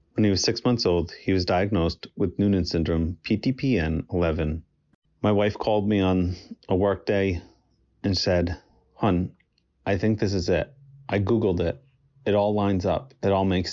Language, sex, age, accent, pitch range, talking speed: English, male, 30-49, American, 85-100 Hz, 170 wpm